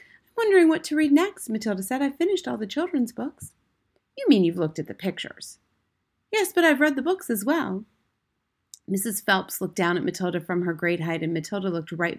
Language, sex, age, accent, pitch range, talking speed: English, female, 30-49, American, 175-285 Hz, 205 wpm